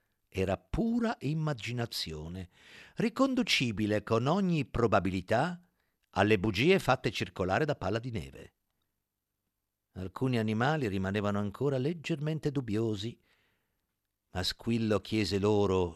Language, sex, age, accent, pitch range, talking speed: Italian, male, 50-69, native, 100-145 Hz, 95 wpm